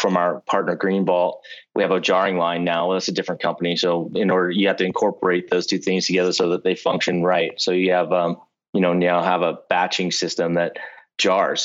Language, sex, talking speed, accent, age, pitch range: English, male, 225 wpm, American, 30-49, 90-100 Hz